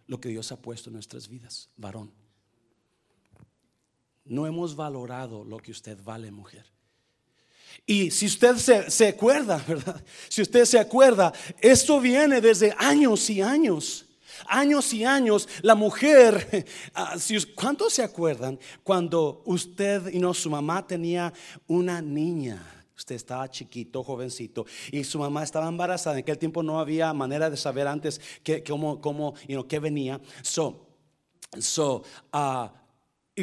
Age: 40-59